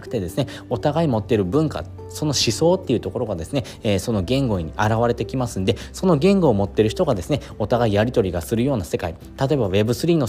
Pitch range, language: 100-145 Hz, Japanese